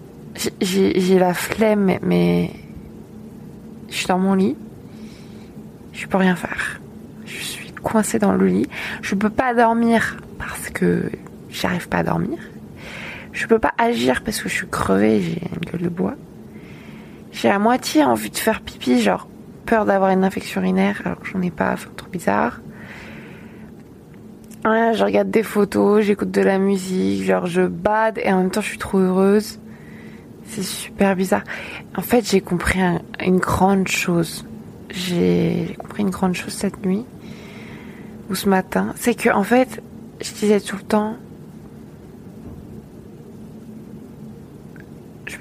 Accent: French